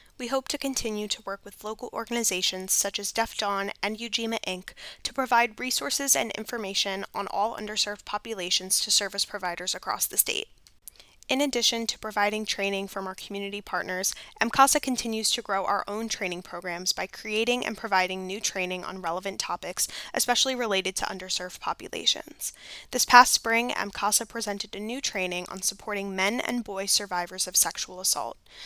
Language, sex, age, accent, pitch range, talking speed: English, female, 10-29, American, 190-230 Hz, 165 wpm